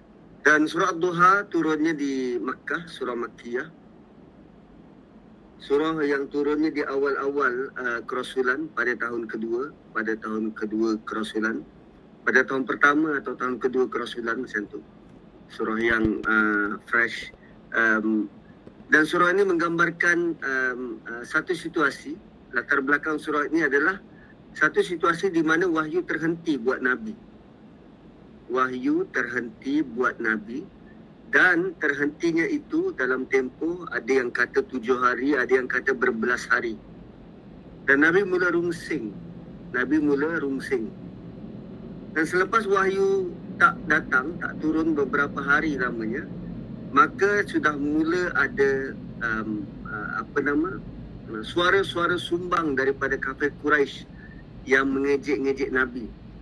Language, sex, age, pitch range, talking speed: Malay, male, 40-59, 130-195 Hz, 115 wpm